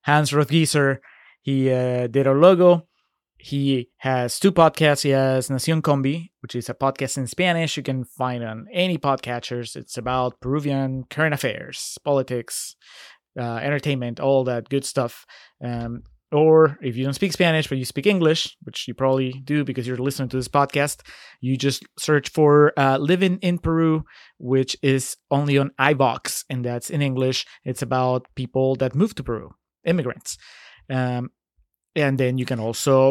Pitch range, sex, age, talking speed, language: 125-145 Hz, male, 20-39, 165 wpm, English